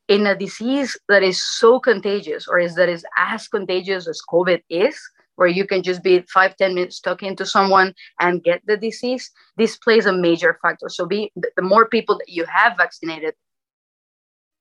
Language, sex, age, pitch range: English, female, 30-49, 180-220 Hz